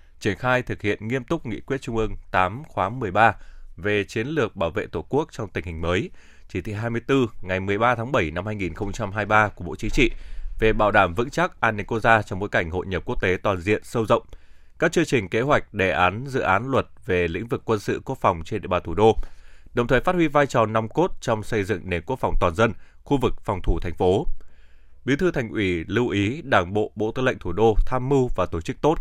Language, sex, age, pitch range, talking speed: Vietnamese, male, 20-39, 90-120 Hz, 250 wpm